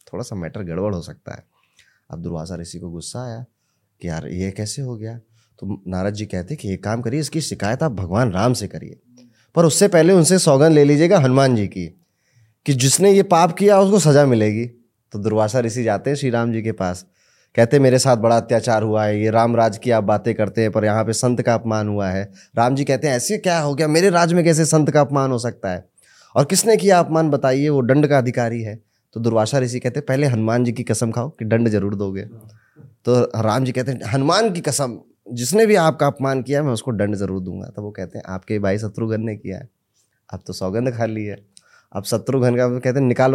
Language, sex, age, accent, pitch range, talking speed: Hindi, male, 20-39, native, 105-140 Hz, 235 wpm